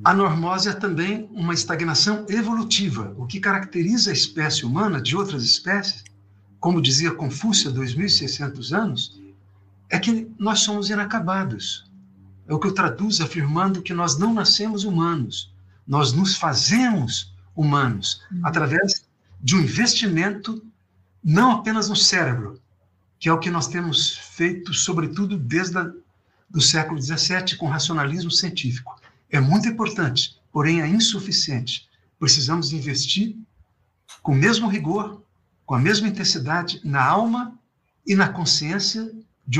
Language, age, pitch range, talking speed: Portuguese, 60-79, 130-195 Hz, 135 wpm